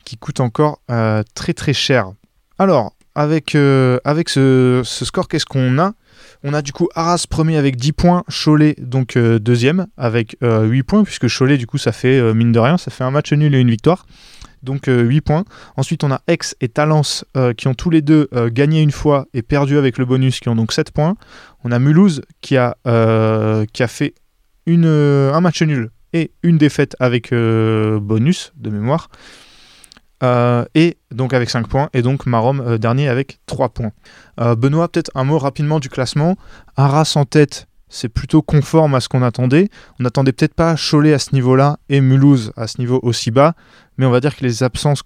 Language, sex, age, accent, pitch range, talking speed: French, male, 20-39, French, 120-150 Hz, 210 wpm